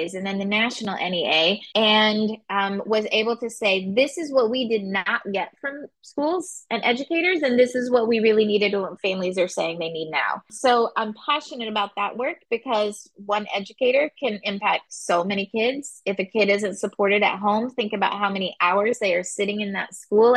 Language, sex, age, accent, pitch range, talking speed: English, female, 20-39, American, 195-245 Hz, 205 wpm